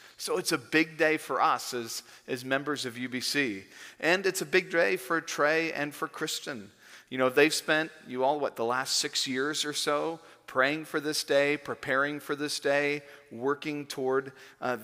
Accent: American